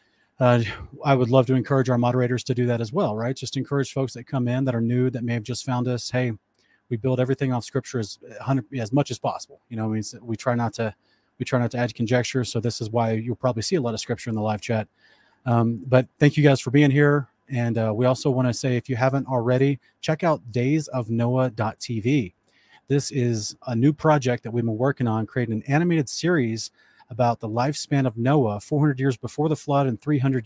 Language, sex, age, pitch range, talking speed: English, male, 30-49, 115-135 Hz, 225 wpm